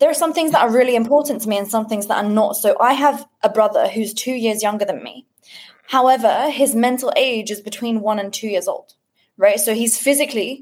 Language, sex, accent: English, female, British